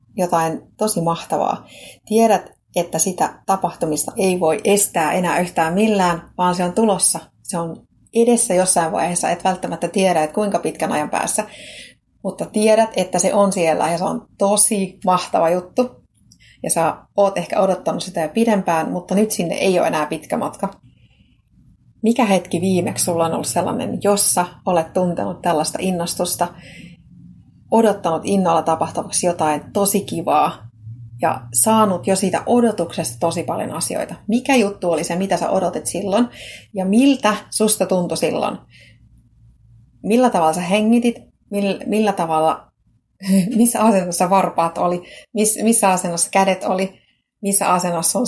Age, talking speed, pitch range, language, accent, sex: 30-49, 140 wpm, 170-210 Hz, Finnish, native, female